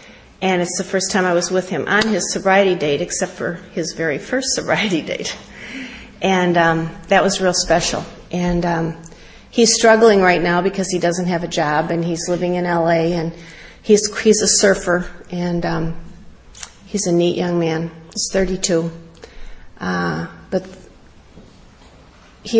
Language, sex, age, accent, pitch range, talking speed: English, female, 40-59, American, 170-200 Hz, 160 wpm